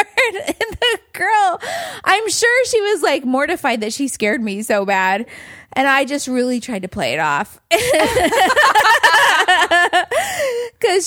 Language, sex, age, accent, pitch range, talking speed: English, female, 20-39, American, 210-290 Hz, 135 wpm